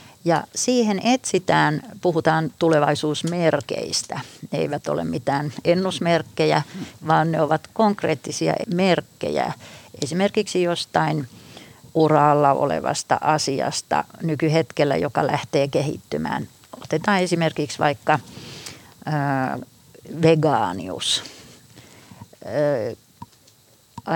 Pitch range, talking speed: 150-190 Hz, 75 wpm